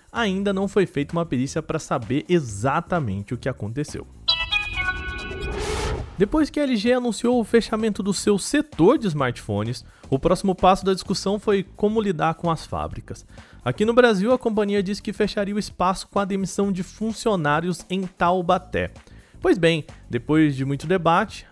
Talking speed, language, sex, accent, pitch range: 160 wpm, Portuguese, male, Brazilian, 150-205 Hz